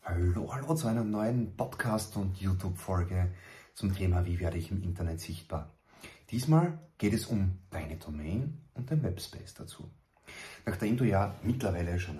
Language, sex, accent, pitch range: German, male, German, 85-115 Hz